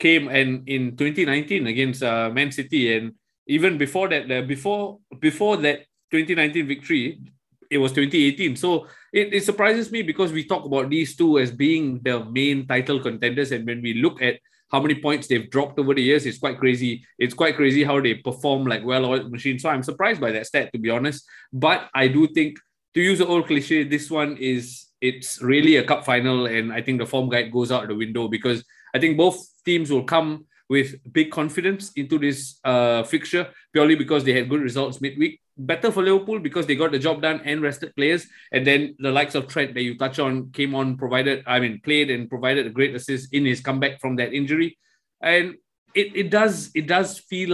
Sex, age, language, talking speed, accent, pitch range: male, 20-39, English, 210 wpm, Malaysian, 130-160 Hz